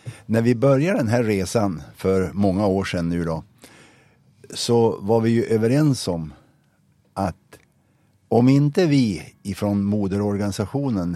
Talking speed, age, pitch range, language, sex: 130 wpm, 50-69, 95-120 Hz, Swedish, male